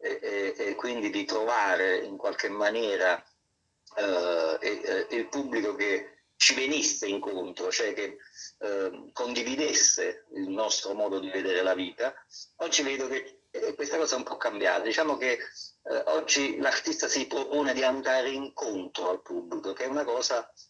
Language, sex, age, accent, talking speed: Italian, male, 50-69, native, 160 wpm